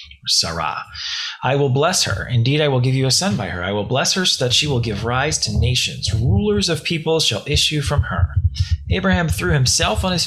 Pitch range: 100-135 Hz